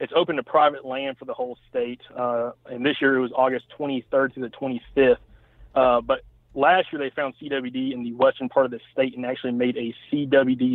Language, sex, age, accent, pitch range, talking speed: English, male, 30-49, American, 125-145 Hz, 220 wpm